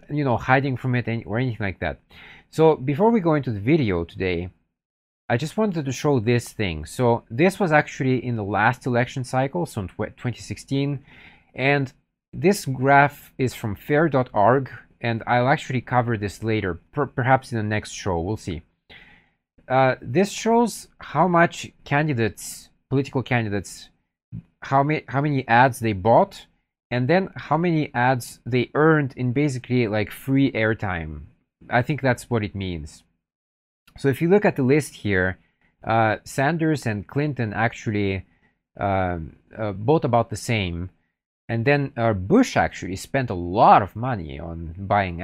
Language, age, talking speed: English, 40-59, 160 wpm